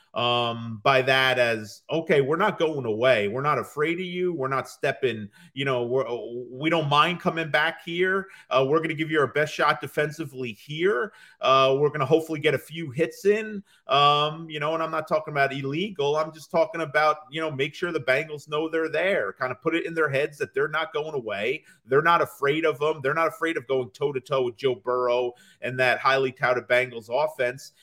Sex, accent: male, American